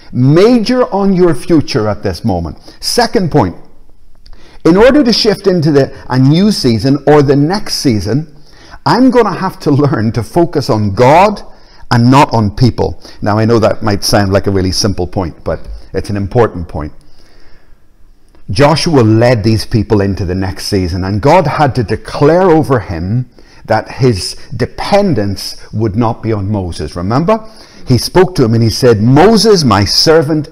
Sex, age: male, 50-69